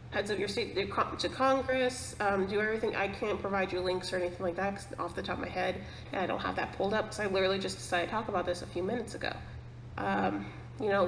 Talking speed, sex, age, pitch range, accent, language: 255 wpm, female, 30-49, 175-210 Hz, American, English